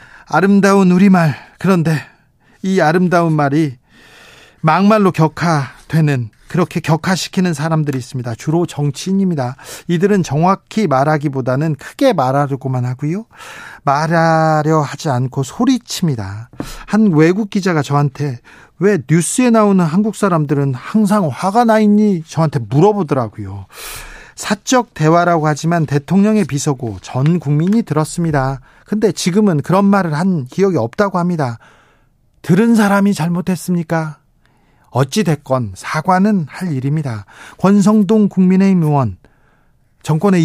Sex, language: male, Korean